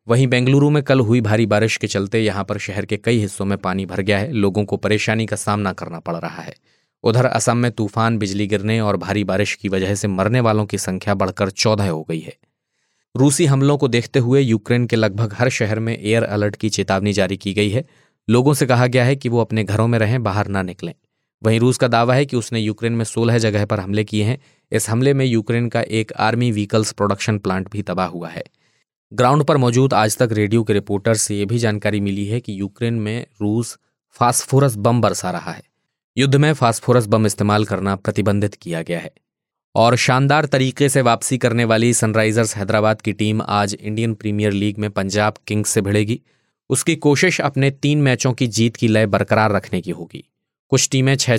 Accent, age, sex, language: native, 20-39, male, Hindi